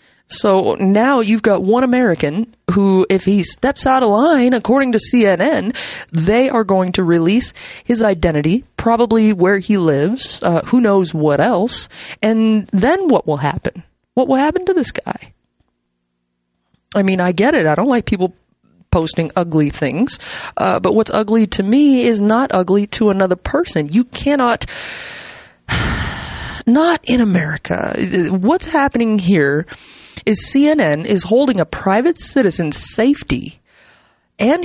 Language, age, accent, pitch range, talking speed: English, 20-39, American, 180-250 Hz, 145 wpm